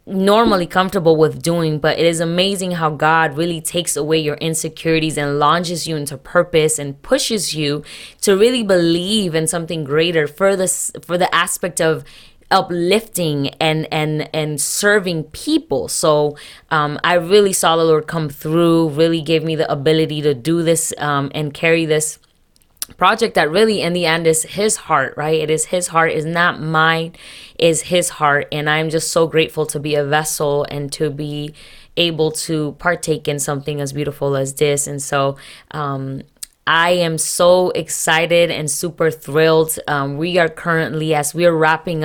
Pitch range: 155-175 Hz